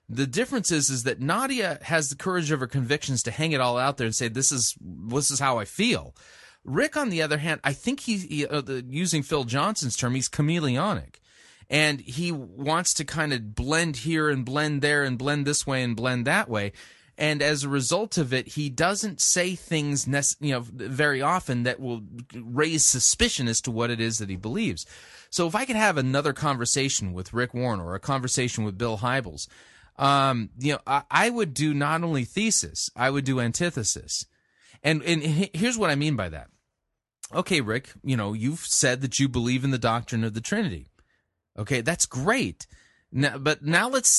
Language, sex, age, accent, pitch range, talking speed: English, male, 30-49, American, 120-155 Hz, 205 wpm